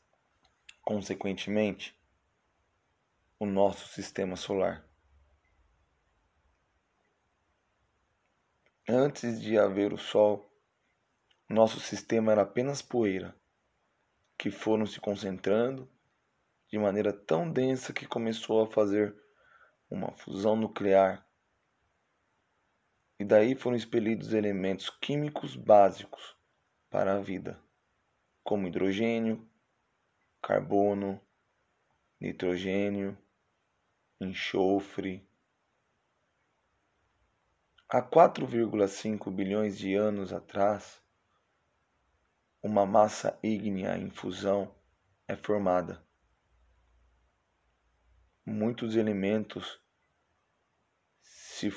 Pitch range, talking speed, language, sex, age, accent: 90-110 Hz, 70 wpm, Portuguese, male, 20-39, Brazilian